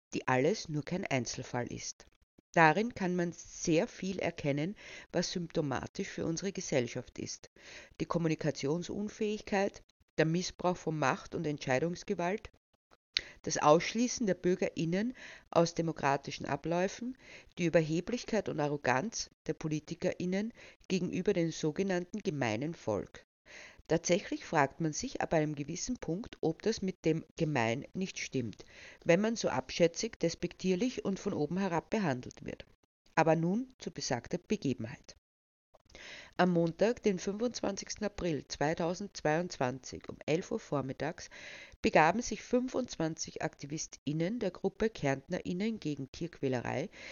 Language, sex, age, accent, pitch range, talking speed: German, female, 50-69, Austrian, 150-195 Hz, 120 wpm